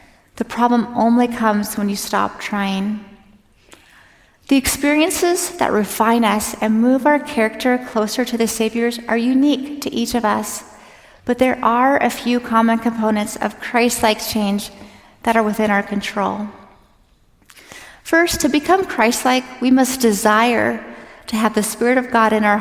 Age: 30-49